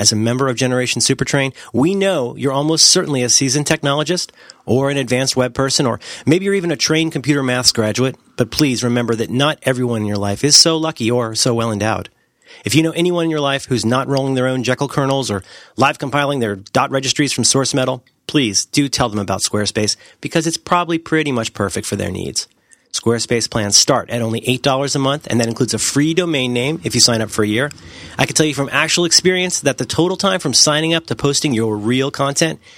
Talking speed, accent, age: 225 wpm, American, 30-49